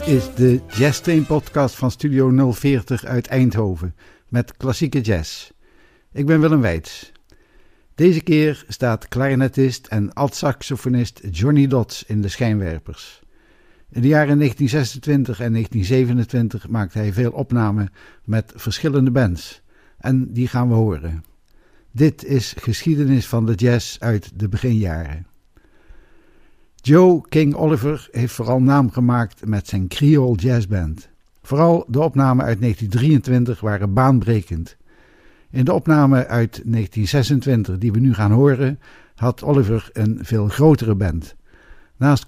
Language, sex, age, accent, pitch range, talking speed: Dutch, male, 60-79, Dutch, 110-140 Hz, 130 wpm